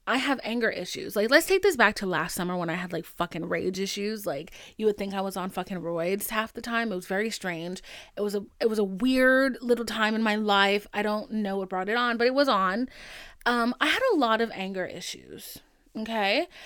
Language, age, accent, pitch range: English, 20-39, American, 200-270 Hz